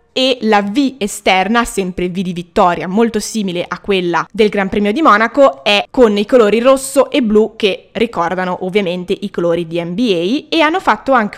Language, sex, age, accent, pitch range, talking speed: Italian, female, 20-39, native, 190-250 Hz, 185 wpm